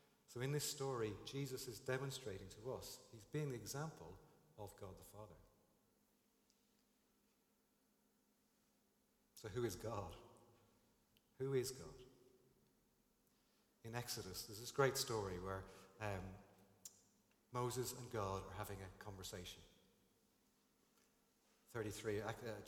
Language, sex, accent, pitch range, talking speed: English, male, British, 100-130 Hz, 105 wpm